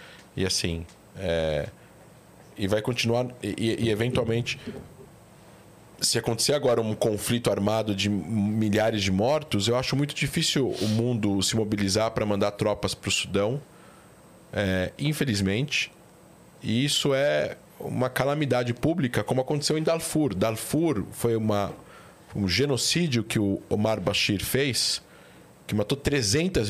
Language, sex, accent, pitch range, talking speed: Portuguese, male, Brazilian, 105-130 Hz, 135 wpm